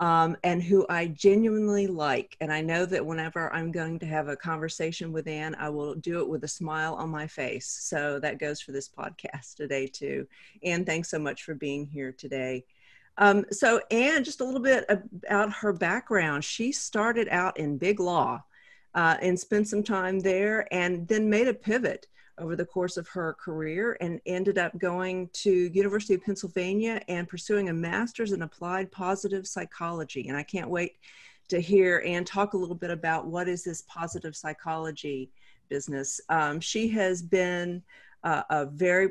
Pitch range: 155-195 Hz